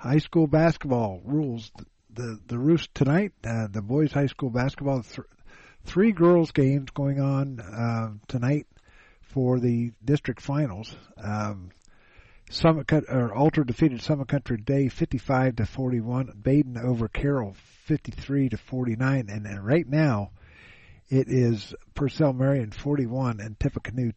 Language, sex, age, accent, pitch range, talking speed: English, male, 50-69, American, 110-140 Hz, 135 wpm